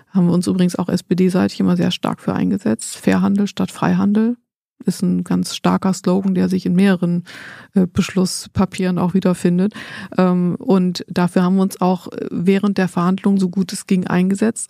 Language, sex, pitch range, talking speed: German, female, 180-200 Hz, 165 wpm